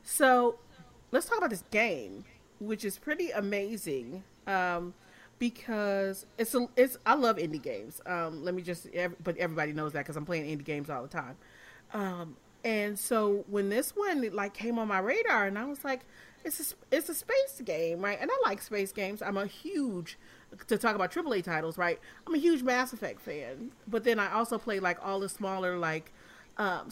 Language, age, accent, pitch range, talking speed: English, 30-49, American, 180-235 Hz, 200 wpm